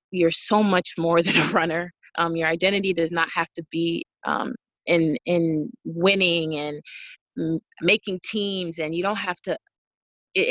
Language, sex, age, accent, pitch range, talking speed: English, female, 20-39, American, 165-195 Hz, 165 wpm